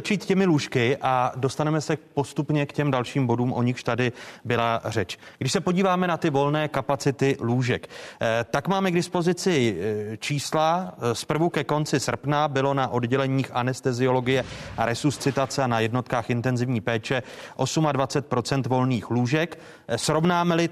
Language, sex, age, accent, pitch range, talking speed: Czech, male, 30-49, native, 120-150 Hz, 135 wpm